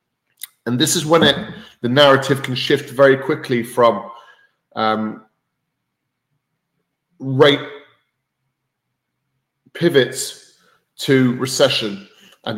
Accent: British